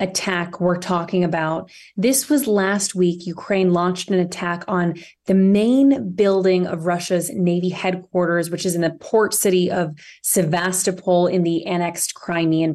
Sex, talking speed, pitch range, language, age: female, 150 wpm, 175-200 Hz, English, 20-39